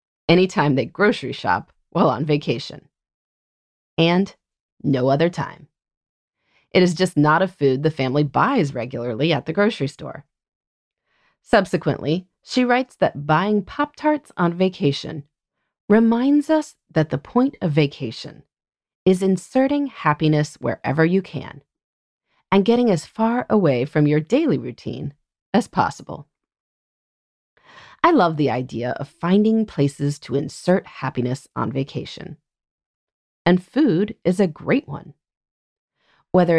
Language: English